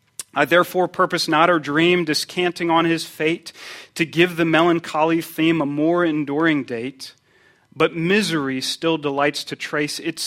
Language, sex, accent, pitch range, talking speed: English, male, American, 140-165 Hz, 150 wpm